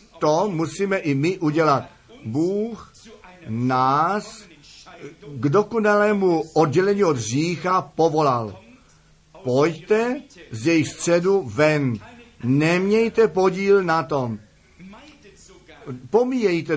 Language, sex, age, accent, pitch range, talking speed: Czech, male, 50-69, native, 150-185 Hz, 80 wpm